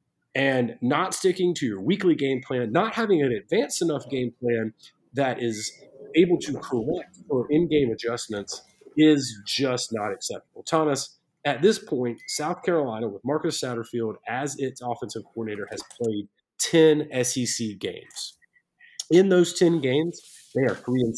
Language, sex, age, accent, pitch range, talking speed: English, male, 30-49, American, 125-175 Hz, 150 wpm